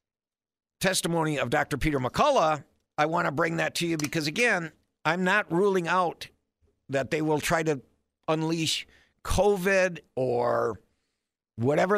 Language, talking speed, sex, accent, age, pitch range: English, 135 wpm, male, American, 50-69, 120-165 Hz